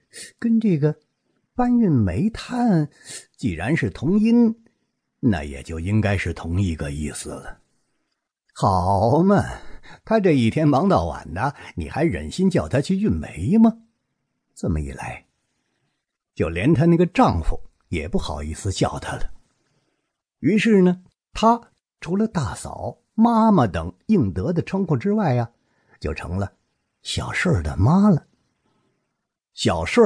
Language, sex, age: English, male, 50-69